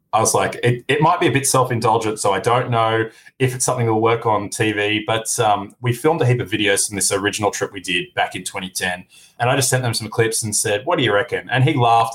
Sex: male